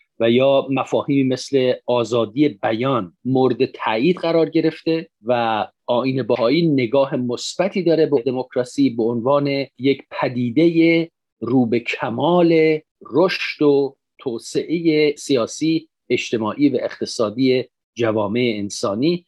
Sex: male